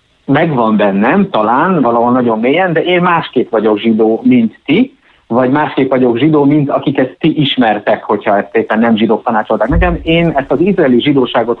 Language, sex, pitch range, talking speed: Hungarian, male, 120-170 Hz, 170 wpm